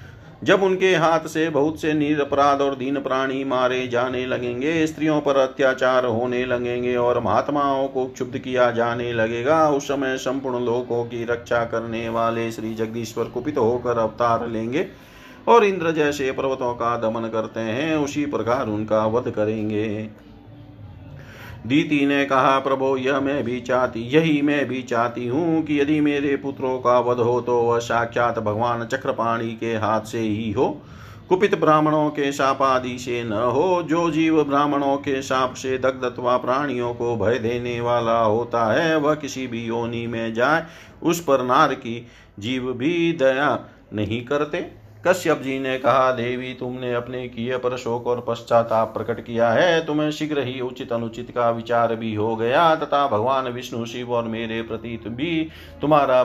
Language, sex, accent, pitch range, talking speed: Hindi, male, native, 115-140 Hz, 160 wpm